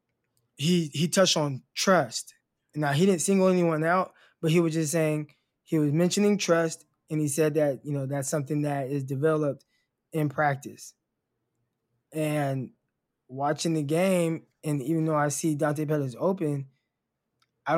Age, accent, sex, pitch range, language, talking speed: 20-39, American, male, 140-165 Hz, English, 155 wpm